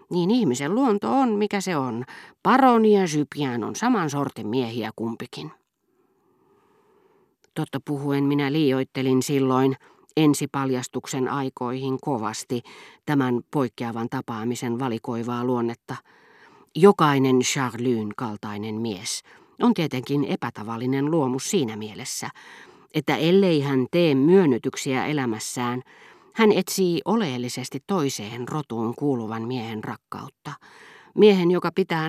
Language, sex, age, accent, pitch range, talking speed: Finnish, female, 40-59, native, 125-175 Hz, 105 wpm